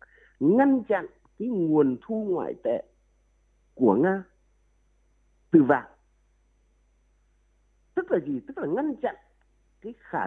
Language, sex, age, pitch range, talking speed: Vietnamese, male, 50-69, 195-300 Hz, 115 wpm